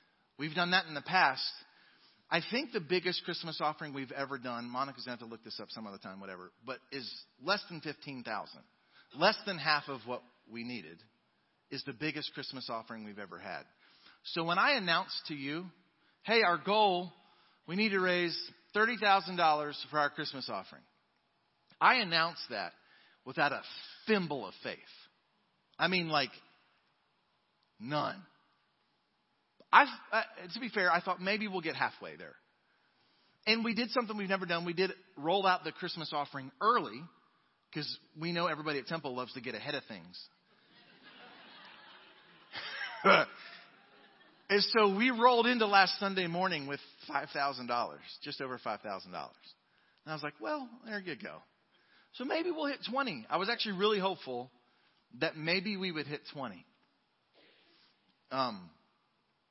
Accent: American